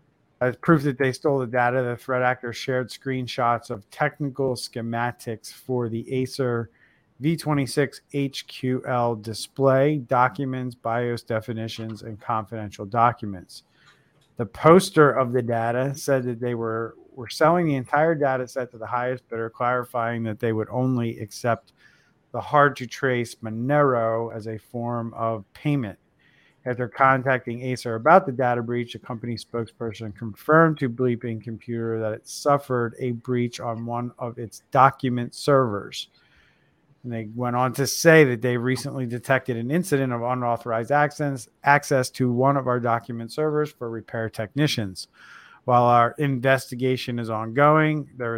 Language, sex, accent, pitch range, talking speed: English, male, American, 115-135 Hz, 145 wpm